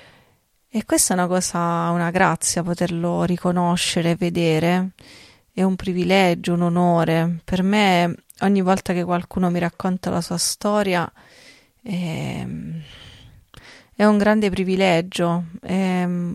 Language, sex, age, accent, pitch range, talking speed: Italian, female, 30-49, native, 170-190 Hz, 115 wpm